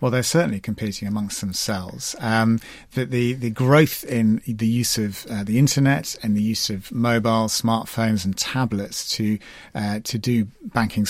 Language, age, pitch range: English, 40-59, 105-120 Hz